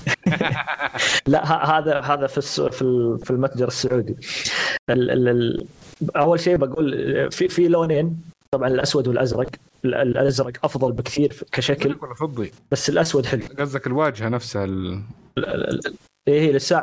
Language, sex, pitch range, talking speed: Arabic, male, 125-150 Hz, 105 wpm